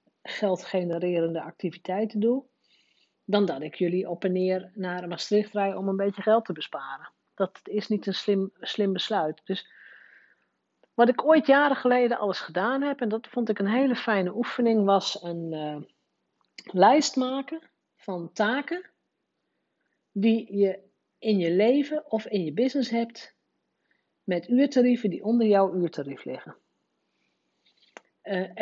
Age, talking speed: 50-69, 145 wpm